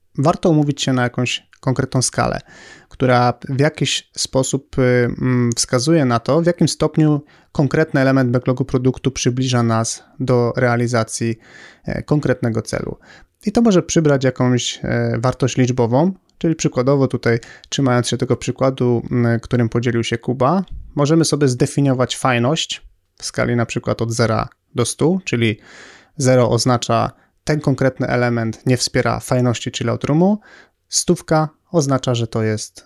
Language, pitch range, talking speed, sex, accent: Polish, 120-140 Hz, 130 wpm, male, native